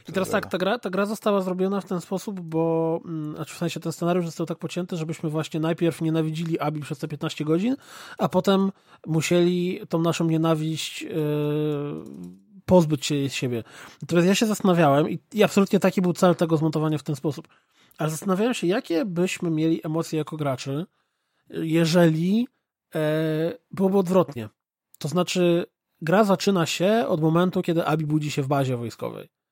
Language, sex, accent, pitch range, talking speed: Polish, male, native, 155-195 Hz, 165 wpm